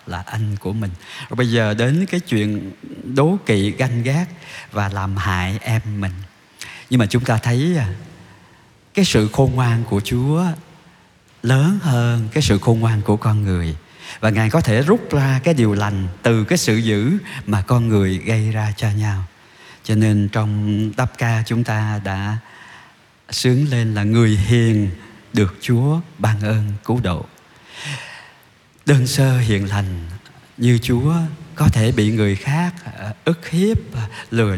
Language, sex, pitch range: Vietnamese, male, 105-140 Hz